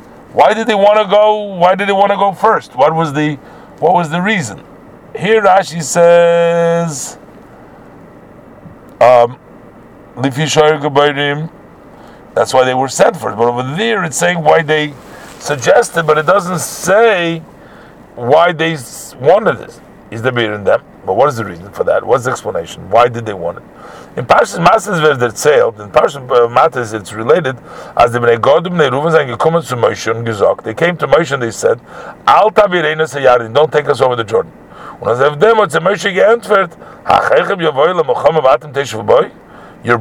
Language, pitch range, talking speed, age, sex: English, 140-195 Hz, 135 wpm, 50-69, male